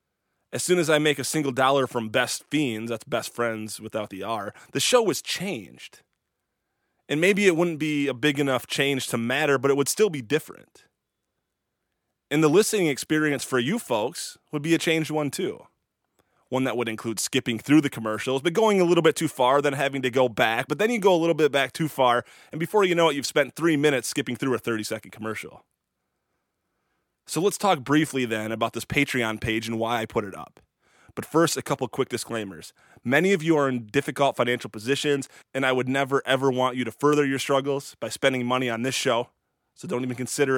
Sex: male